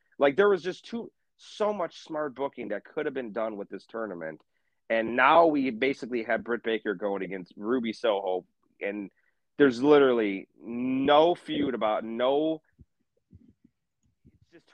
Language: English